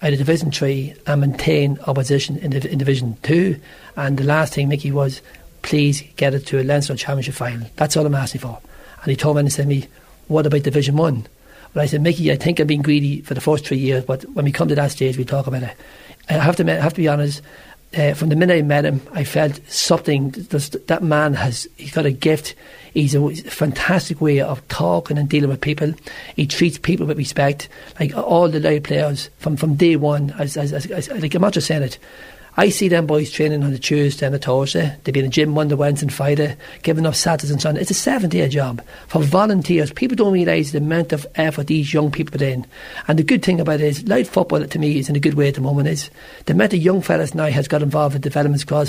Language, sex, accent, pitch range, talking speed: English, male, Irish, 140-160 Hz, 245 wpm